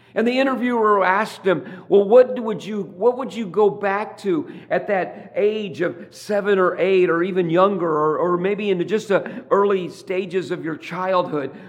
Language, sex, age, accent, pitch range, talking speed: English, male, 50-69, American, 180-220 Hz, 185 wpm